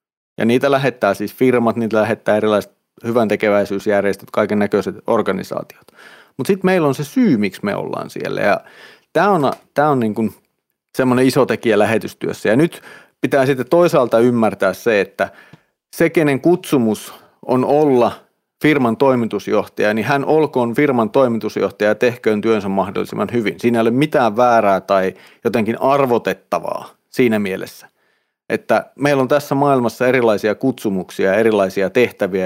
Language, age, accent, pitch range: Finnish, 40-59, native, 110-135 Hz